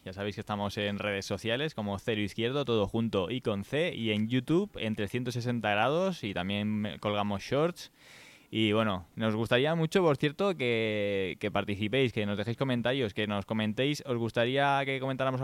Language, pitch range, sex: Spanish, 105-135 Hz, male